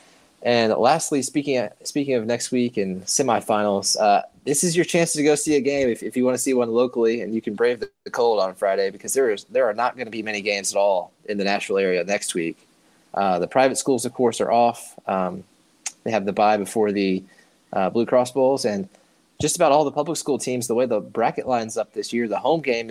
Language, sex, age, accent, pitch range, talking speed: English, male, 20-39, American, 105-140 Hz, 245 wpm